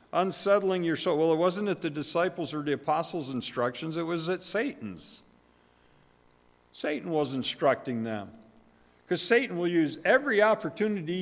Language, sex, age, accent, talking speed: English, male, 50-69, American, 145 wpm